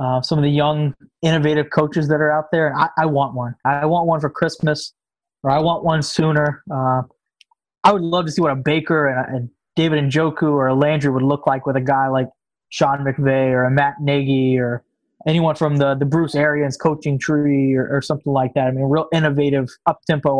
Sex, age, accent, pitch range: male, 20-39, American, 135-160 Hz